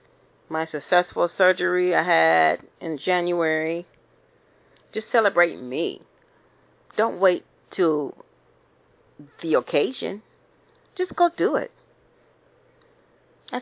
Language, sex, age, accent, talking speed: English, female, 40-59, American, 90 wpm